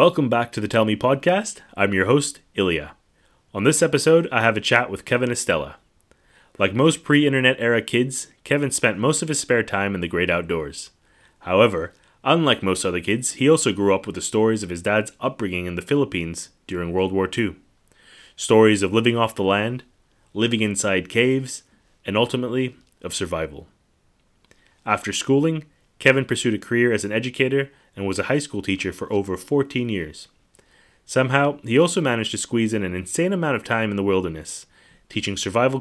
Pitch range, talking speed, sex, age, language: 95-130 Hz, 185 wpm, male, 30-49, English